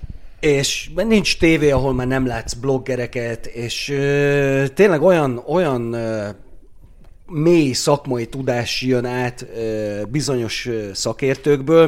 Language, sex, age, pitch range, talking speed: Hungarian, male, 30-49, 125-155 Hz, 95 wpm